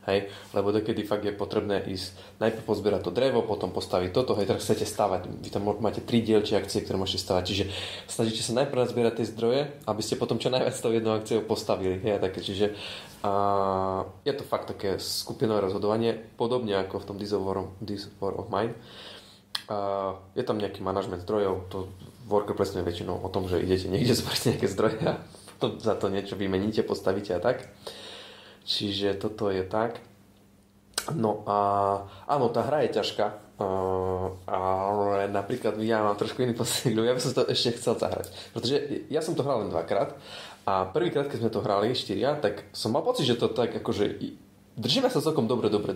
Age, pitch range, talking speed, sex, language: 20-39, 95-110 Hz, 185 wpm, male, Slovak